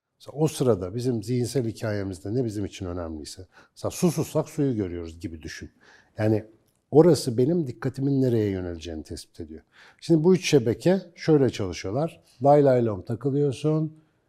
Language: Turkish